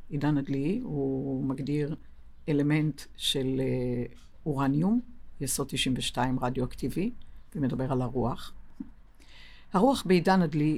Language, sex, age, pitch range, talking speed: Hebrew, female, 60-79, 130-170 Hz, 90 wpm